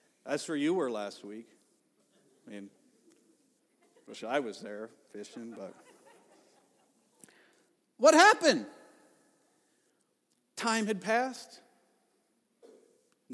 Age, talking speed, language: 50-69, 90 wpm, English